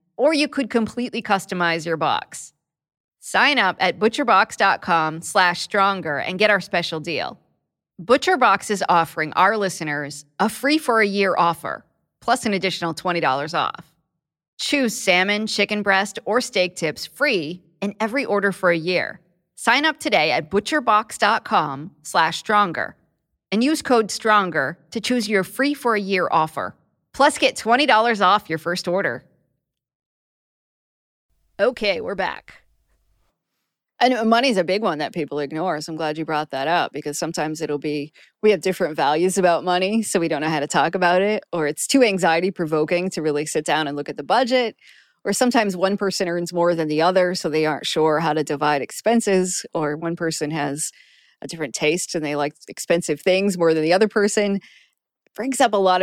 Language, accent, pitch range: English, American, 160-210 Hz